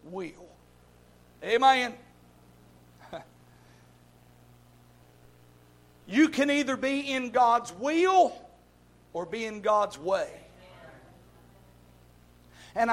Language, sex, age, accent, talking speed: English, male, 50-69, American, 70 wpm